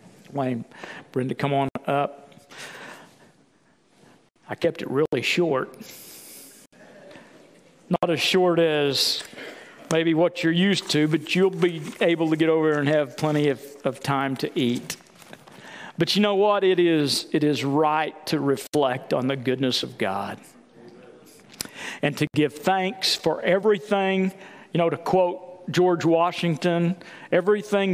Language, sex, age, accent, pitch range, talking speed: English, male, 50-69, American, 140-175 Hz, 135 wpm